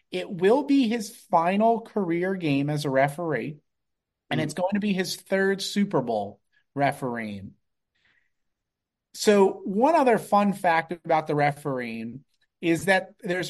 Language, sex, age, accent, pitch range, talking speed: English, male, 30-49, American, 150-205 Hz, 140 wpm